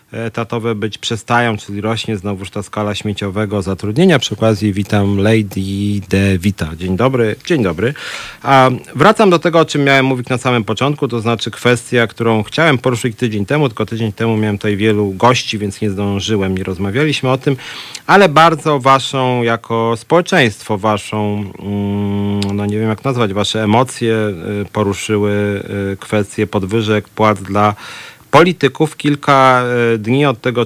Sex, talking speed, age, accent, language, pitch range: male, 150 wpm, 40-59, native, Polish, 105-125 Hz